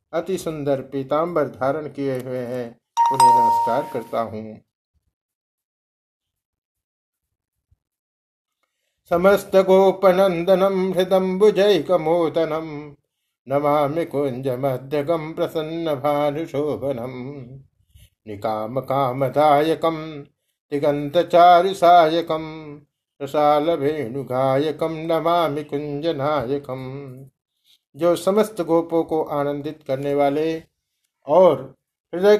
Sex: male